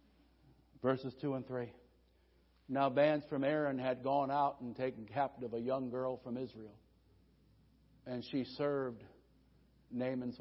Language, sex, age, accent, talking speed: English, male, 60-79, American, 135 wpm